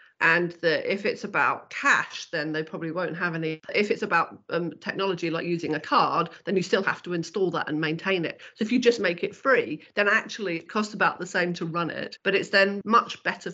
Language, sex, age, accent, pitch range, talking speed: English, female, 40-59, British, 160-195 Hz, 235 wpm